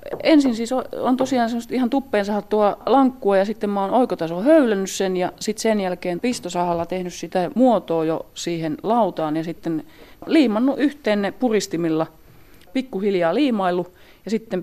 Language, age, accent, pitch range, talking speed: Finnish, 30-49, native, 160-205 Hz, 145 wpm